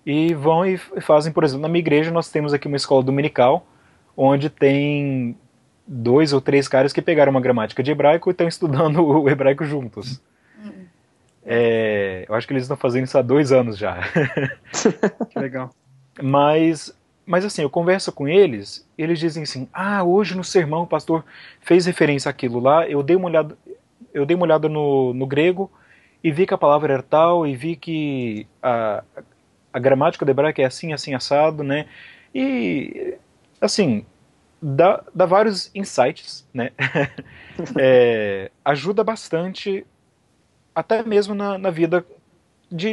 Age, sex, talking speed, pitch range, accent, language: 30-49, male, 155 wpm, 130-175 Hz, Brazilian, Portuguese